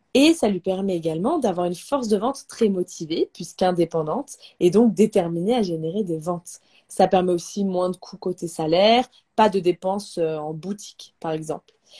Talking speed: 175 wpm